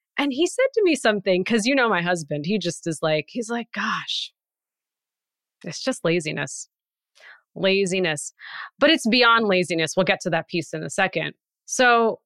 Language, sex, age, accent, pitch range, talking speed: English, female, 30-49, American, 160-220 Hz, 170 wpm